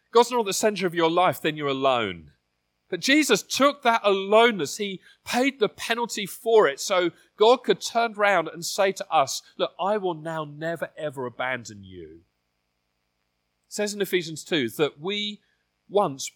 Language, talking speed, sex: English, 170 wpm, male